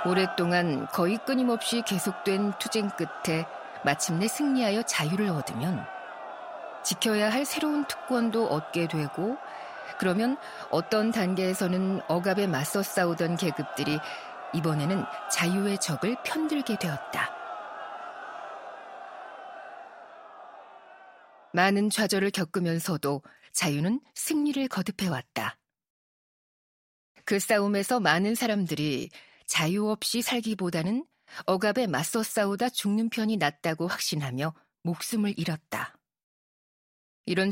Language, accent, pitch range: Korean, native, 170-225 Hz